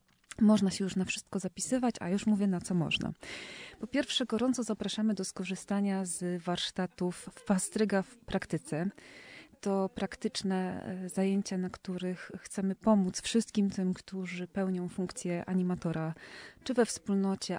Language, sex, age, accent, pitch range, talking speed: Polish, female, 30-49, native, 185-210 Hz, 135 wpm